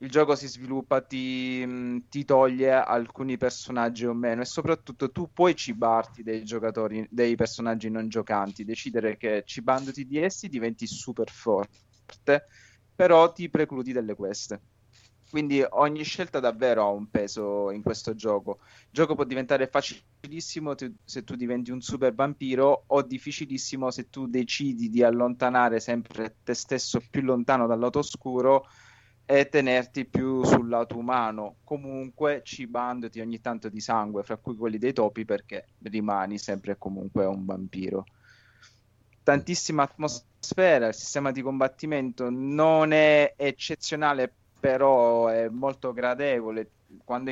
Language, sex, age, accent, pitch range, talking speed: Italian, male, 20-39, native, 110-135 Hz, 140 wpm